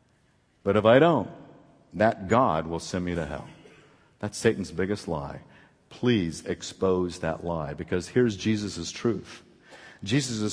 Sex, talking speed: male, 135 wpm